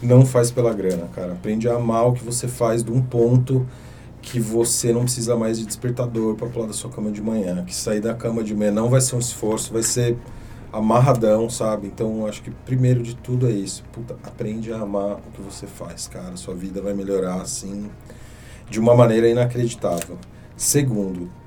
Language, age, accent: Portuguese, 40-59, Brazilian